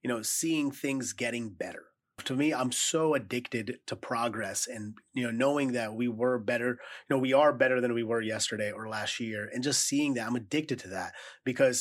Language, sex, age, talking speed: English, male, 30-49, 215 wpm